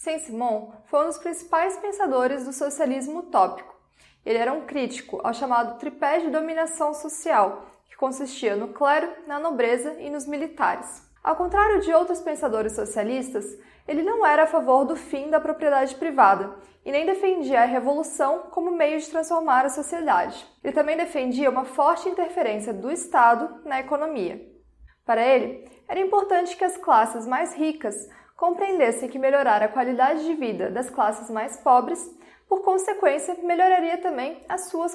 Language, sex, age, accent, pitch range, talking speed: Portuguese, female, 20-39, Brazilian, 255-340 Hz, 155 wpm